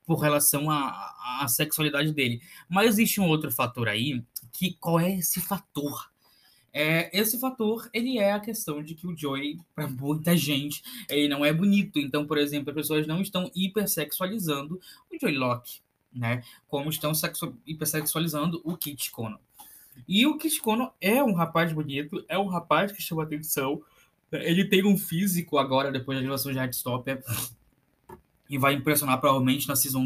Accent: Brazilian